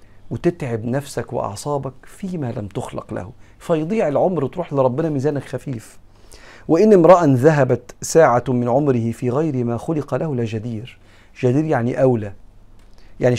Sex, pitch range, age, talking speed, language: male, 110-135 Hz, 40-59, 130 wpm, Arabic